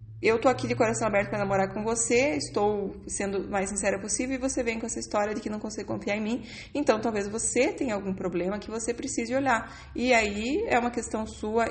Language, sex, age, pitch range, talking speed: Portuguese, female, 20-39, 180-235 Hz, 225 wpm